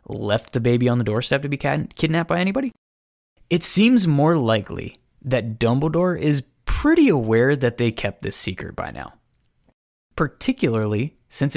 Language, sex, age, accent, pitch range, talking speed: English, male, 20-39, American, 110-160 Hz, 150 wpm